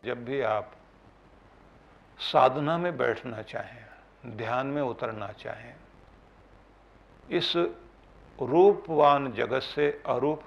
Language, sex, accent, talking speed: Hindi, male, native, 90 wpm